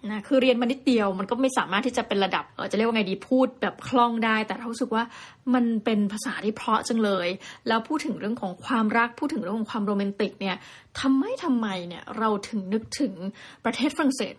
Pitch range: 210-255 Hz